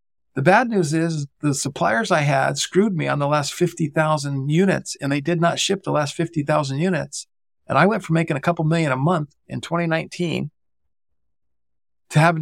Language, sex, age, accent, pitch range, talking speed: English, male, 50-69, American, 125-160 Hz, 185 wpm